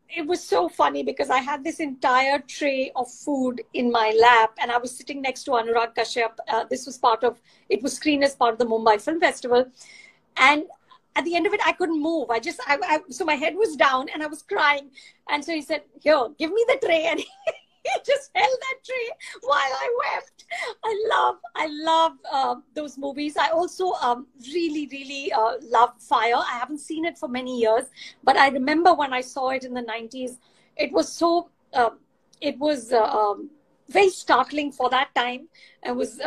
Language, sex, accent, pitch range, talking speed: English, female, Indian, 245-320 Hz, 210 wpm